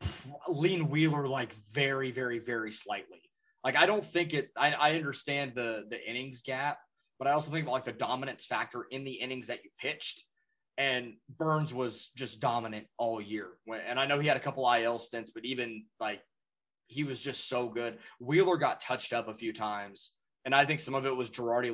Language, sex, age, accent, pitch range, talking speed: English, male, 20-39, American, 115-145 Hz, 200 wpm